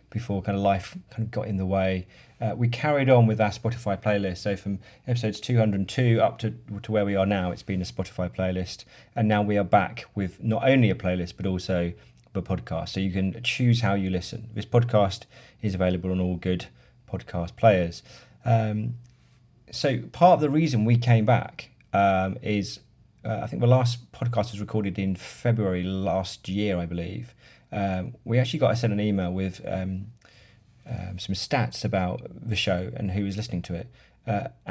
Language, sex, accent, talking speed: English, male, British, 195 wpm